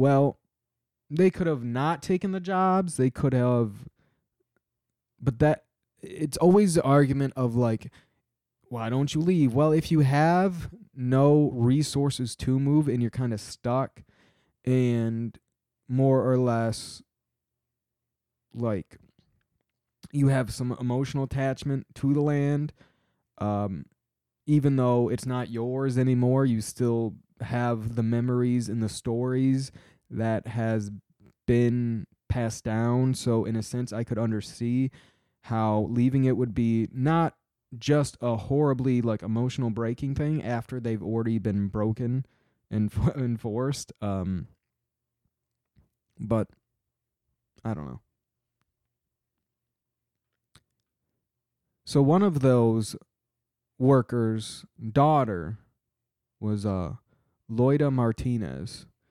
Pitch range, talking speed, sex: 115-140 Hz, 115 wpm, male